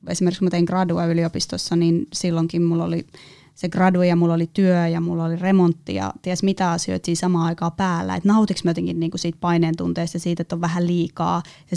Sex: female